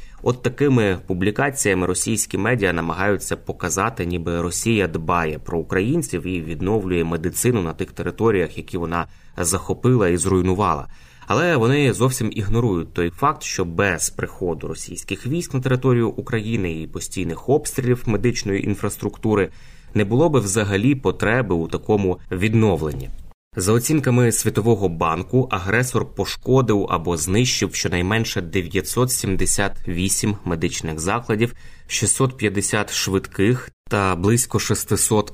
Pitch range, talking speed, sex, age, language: 90-115 Hz, 115 wpm, male, 20-39, Ukrainian